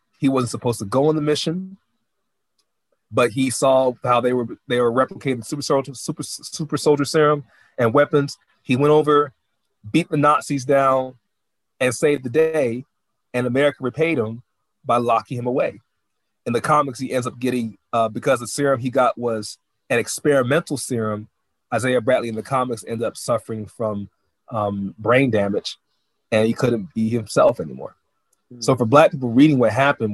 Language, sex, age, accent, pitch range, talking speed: English, male, 30-49, American, 115-140 Hz, 170 wpm